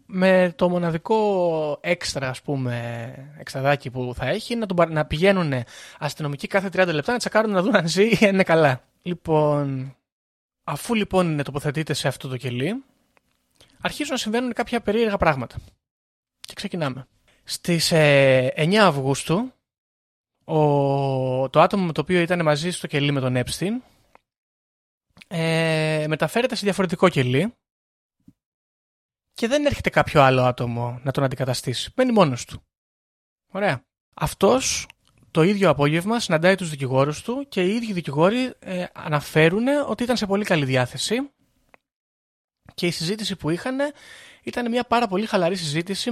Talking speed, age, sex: 140 wpm, 20-39, male